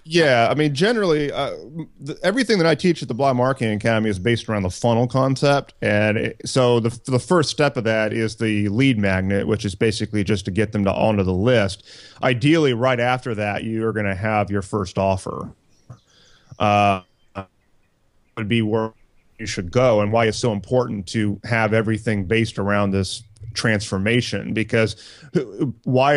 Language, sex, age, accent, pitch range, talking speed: English, male, 30-49, American, 105-130 Hz, 175 wpm